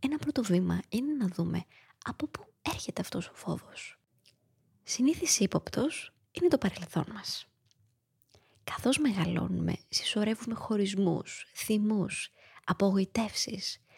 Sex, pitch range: female, 180-240 Hz